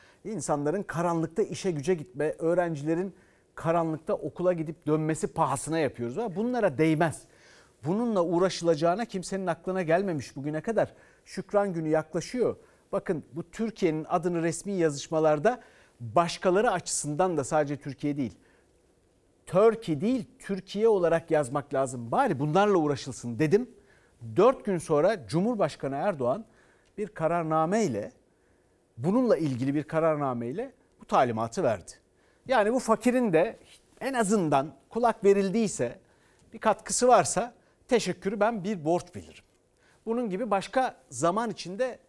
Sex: male